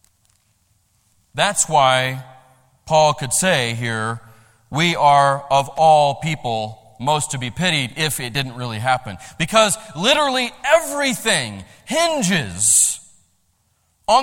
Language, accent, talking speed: English, American, 105 wpm